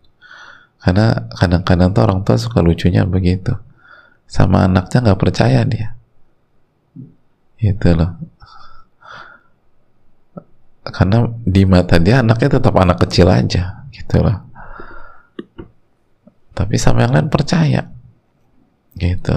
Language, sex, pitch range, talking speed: Indonesian, male, 105-145 Hz, 100 wpm